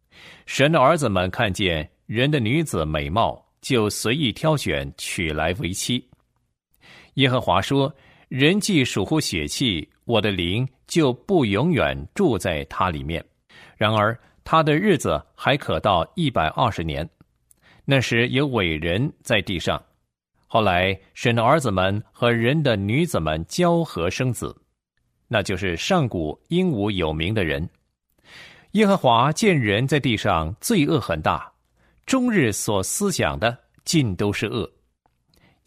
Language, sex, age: Chinese, male, 50-69